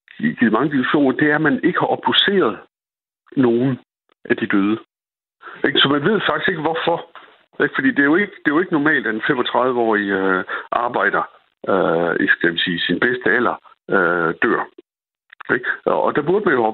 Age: 60-79